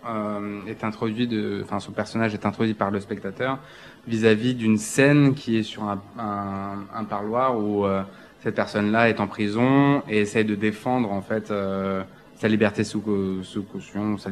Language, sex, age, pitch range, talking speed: French, male, 20-39, 100-115 Hz, 185 wpm